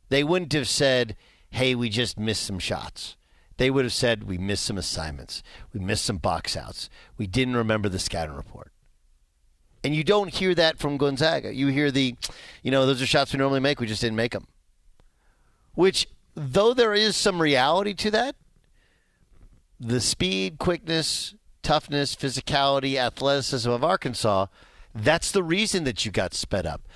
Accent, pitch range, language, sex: American, 110-165 Hz, English, male